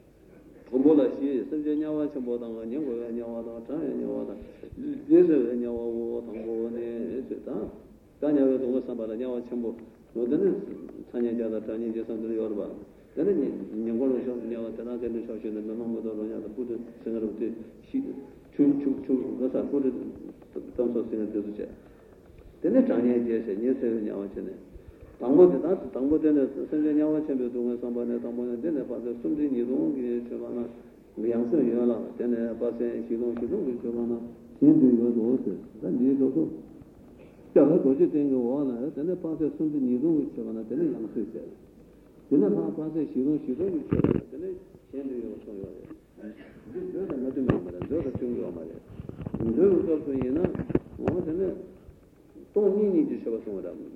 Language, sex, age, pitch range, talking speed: Italian, male, 50-69, 115-140 Hz, 45 wpm